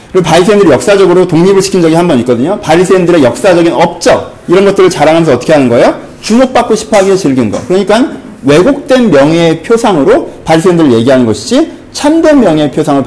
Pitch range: 170-235 Hz